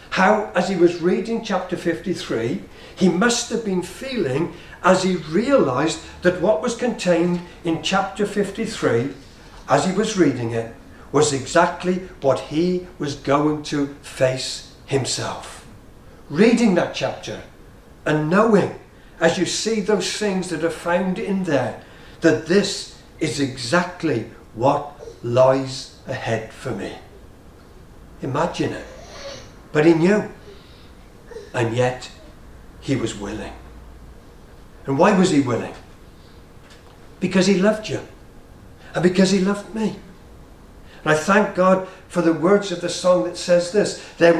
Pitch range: 150-195 Hz